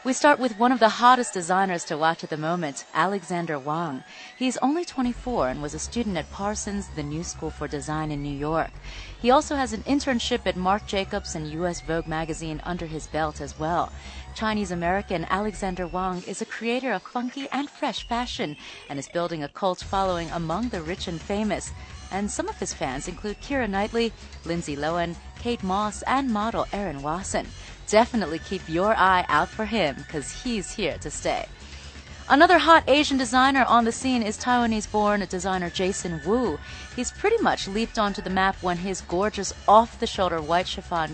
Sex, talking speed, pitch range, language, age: female, 180 wpm, 165-235 Hz, English, 30-49